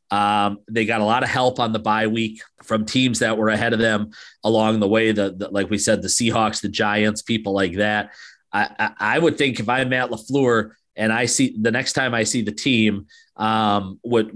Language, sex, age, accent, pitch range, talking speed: English, male, 40-59, American, 105-125 Hz, 225 wpm